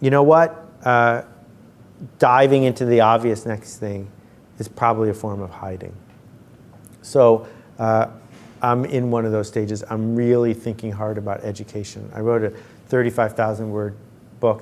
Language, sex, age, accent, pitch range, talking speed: English, male, 50-69, American, 105-120 Hz, 150 wpm